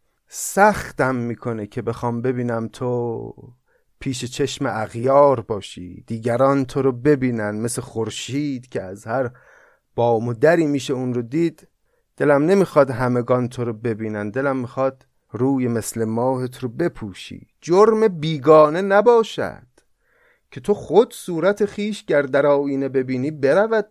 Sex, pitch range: male, 120-165 Hz